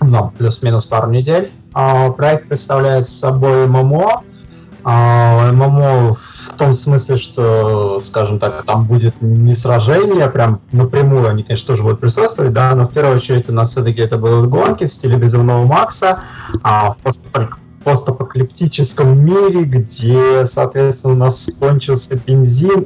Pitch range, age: 110-130 Hz, 20-39